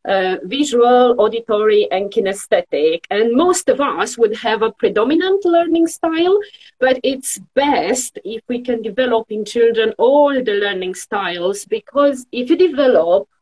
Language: English